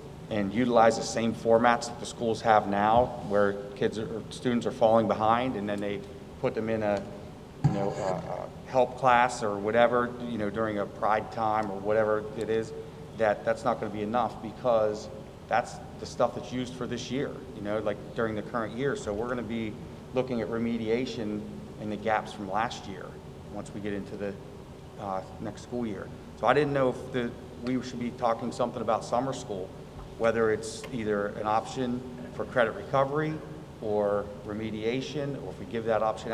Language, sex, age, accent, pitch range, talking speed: English, male, 30-49, American, 105-120 Hz, 190 wpm